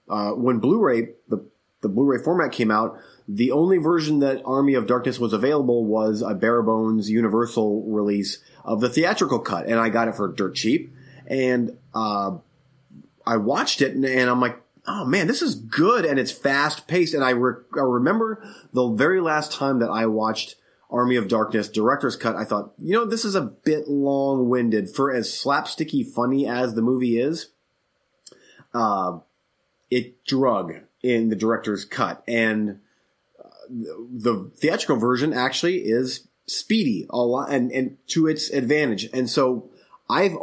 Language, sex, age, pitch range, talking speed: English, male, 30-49, 110-140 Hz, 160 wpm